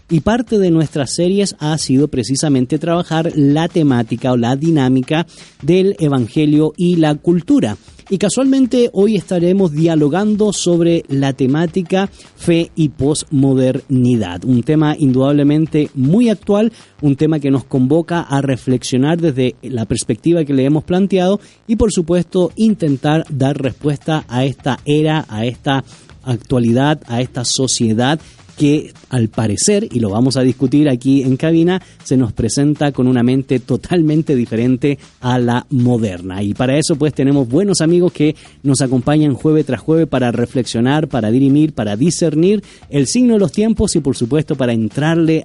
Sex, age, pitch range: male, 30-49, 130-165 Hz